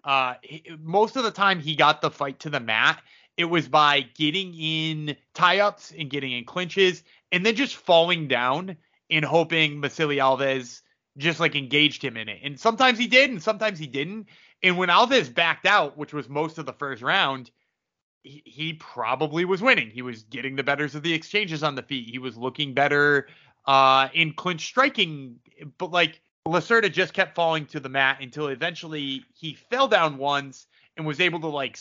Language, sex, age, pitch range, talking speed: English, male, 30-49, 140-190 Hz, 190 wpm